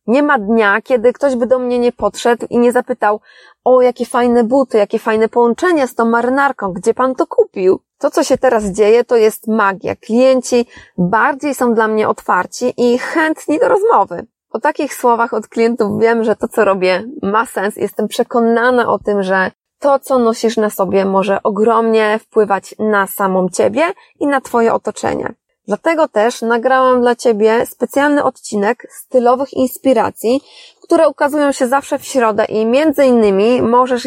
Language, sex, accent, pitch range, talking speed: Polish, female, native, 220-265 Hz, 170 wpm